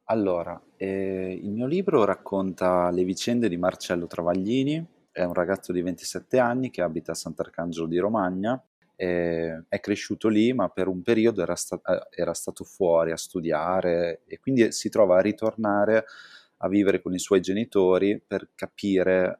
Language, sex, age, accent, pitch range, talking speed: Italian, male, 30-49, native, 85-100 Hz, 155 wpm